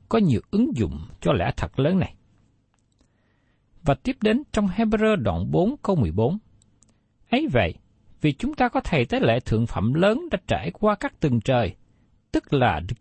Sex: male